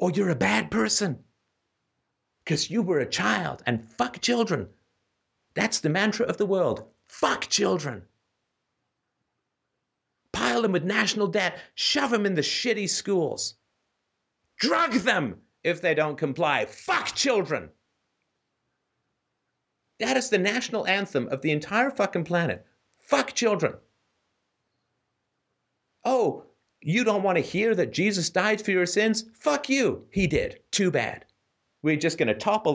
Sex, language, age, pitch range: male, English, 50-69, 135-200 Hz